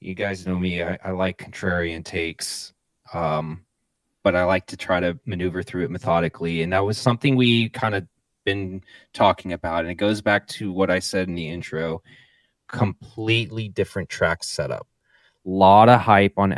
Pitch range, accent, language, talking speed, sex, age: 90-110 Hz, American, English, 175 wpm, male, 20-39